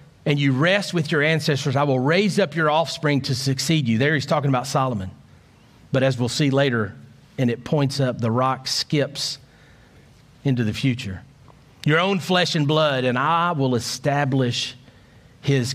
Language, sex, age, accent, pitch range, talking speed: English, male, 40-59, American, 120-165 Hz, 170 wpm